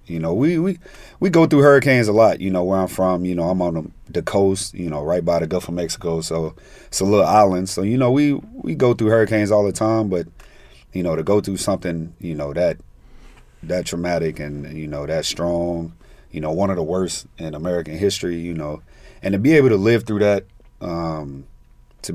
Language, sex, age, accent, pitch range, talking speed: Greek, male, 30-49, American, 80-95 Hz, 215 wpm